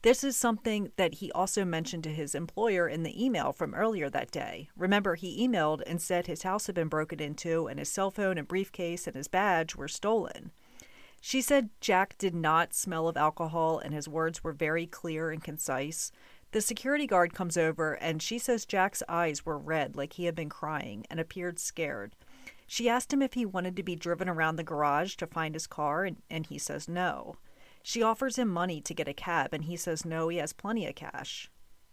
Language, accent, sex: English, American, female